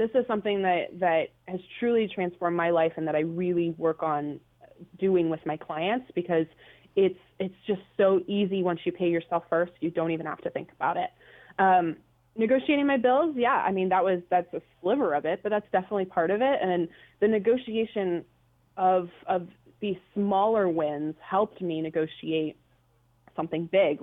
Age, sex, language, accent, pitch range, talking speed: 20-39, female, English, American, 165-200 Hz, 180 wpm